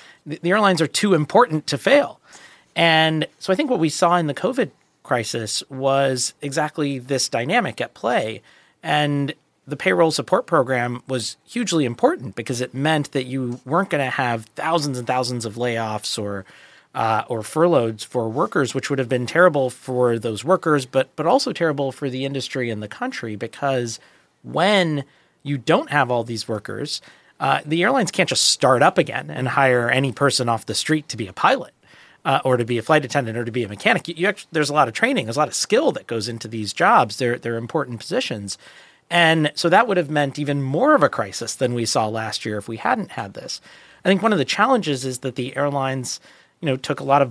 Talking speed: 215 wpm